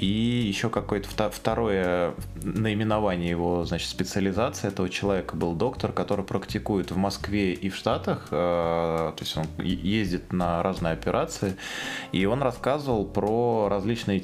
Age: 20-39